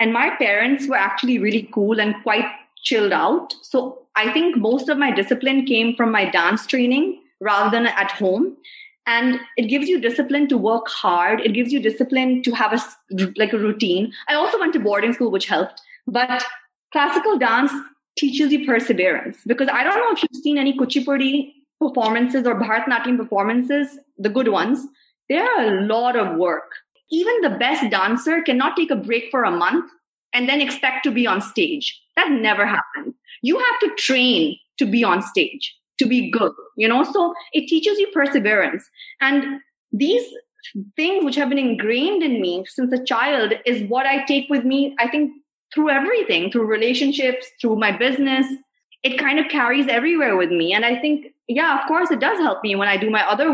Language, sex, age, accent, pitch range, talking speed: English, female, 20-39, Indian, 230-295 Hz, 190 wpm